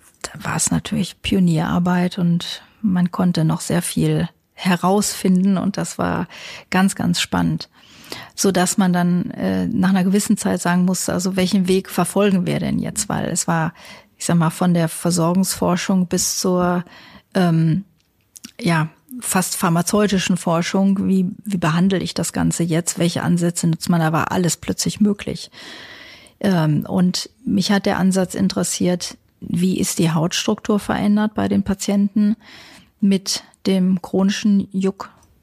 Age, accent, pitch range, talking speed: 40-59, German, 170-200 Hz, 145 wpm